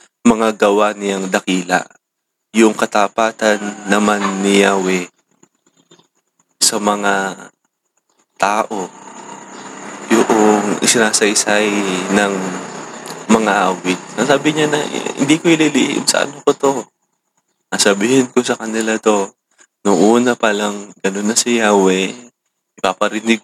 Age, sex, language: 20-39, male, English